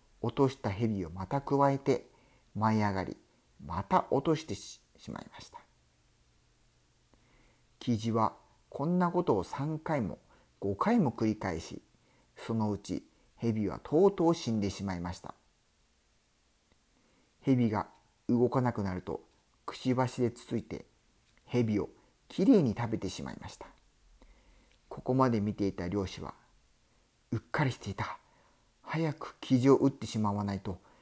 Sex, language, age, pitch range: male, Spanish, 50-69, 100-140 Hz